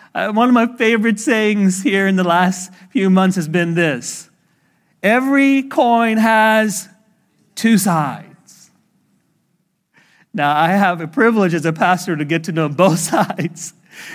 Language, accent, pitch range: English, American, 180-235 Hz